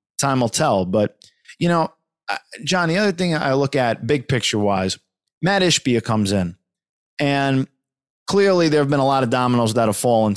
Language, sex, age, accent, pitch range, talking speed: English, male, 20-39, American, 115-150 Hz, 185 wpm